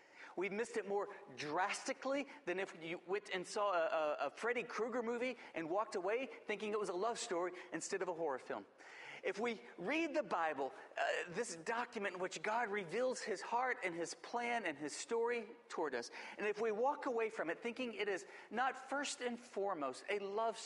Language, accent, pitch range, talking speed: English, American, 195-260 Hz, 200 wpm